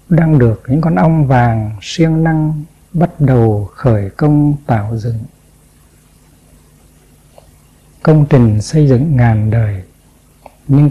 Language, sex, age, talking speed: Vietnamese, male, 60-79, 115 wpm